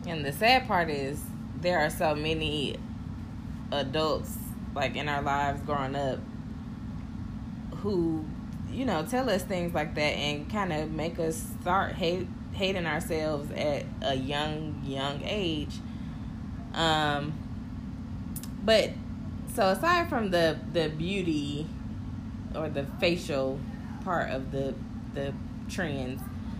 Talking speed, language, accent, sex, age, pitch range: 120 wpm, English, American, female, 20-39, 120-160 Hz